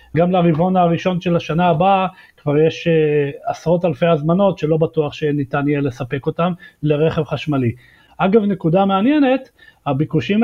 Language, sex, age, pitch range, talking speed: Hebrew, male, 40-59, 150-185 Hz, 140 wpm